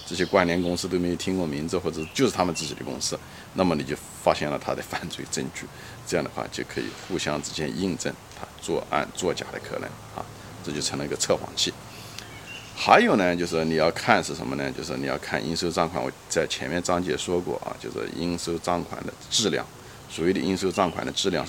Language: Chinese